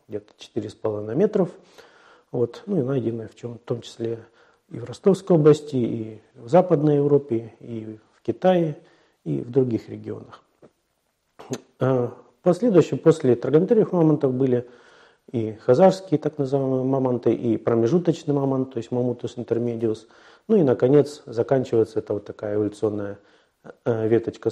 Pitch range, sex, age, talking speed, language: 115-160 Hz, male, 40-59, 130 wpm, Russian